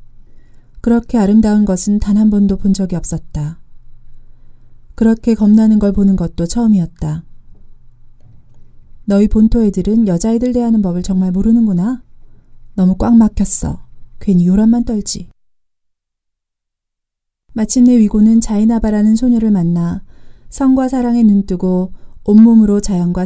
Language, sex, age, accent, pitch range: Korean, female, 30-49, native, 165-225 Hz